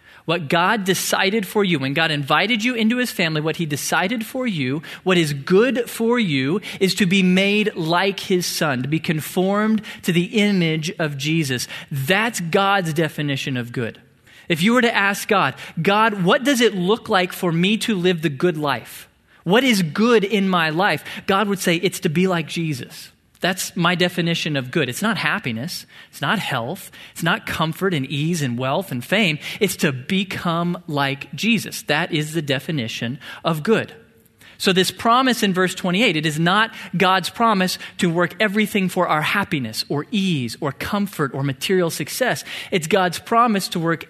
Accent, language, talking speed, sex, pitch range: American, English, 185 wpm, male, 150-200 Hz